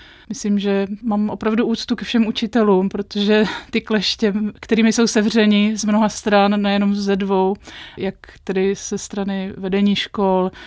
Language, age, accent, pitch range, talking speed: Czech, 30-49, native, 190-215 Hz, 145 wpm